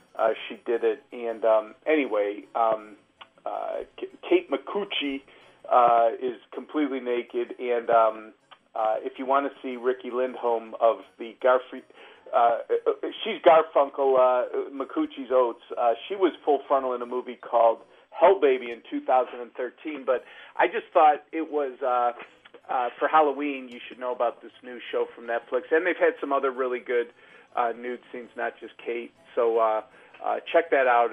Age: 40-59